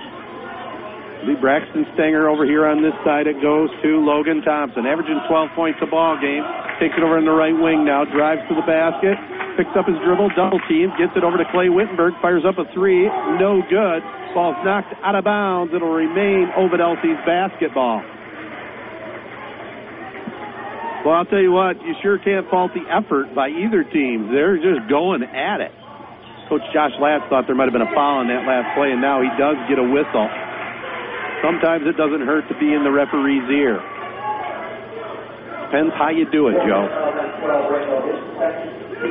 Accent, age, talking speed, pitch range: American, 50-69, 180 wpm, 140-185 Hz